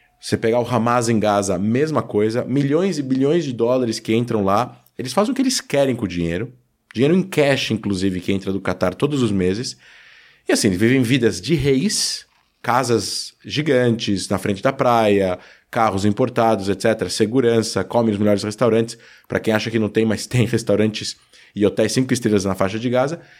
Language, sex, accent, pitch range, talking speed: Portuguese, male, Brazilian, 95-130 Hz, 190 wpm